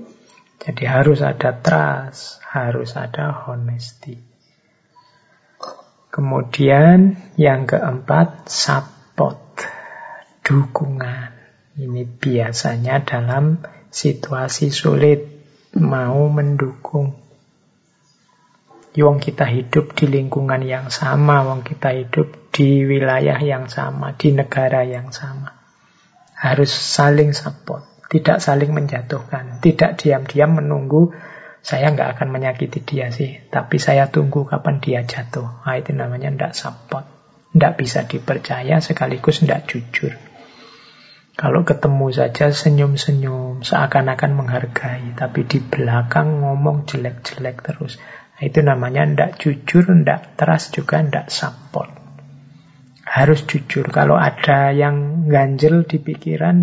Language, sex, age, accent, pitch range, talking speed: Indonesian, male, 50-69, native, 130-155 Hz, 105 wpm